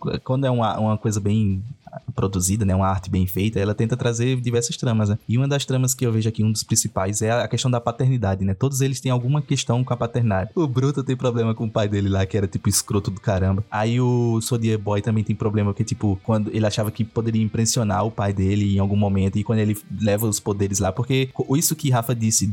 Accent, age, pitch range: Brazilian, 20-39, 105-125 Hz